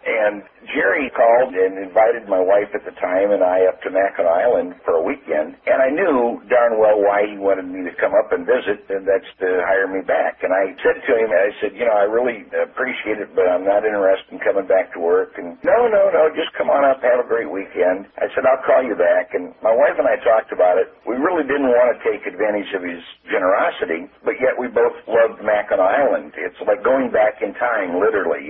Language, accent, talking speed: English, American, 235 wpm